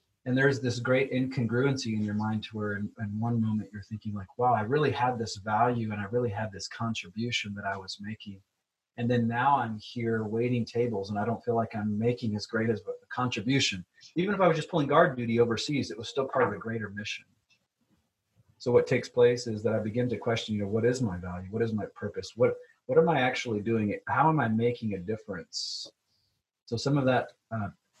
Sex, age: male, 30-49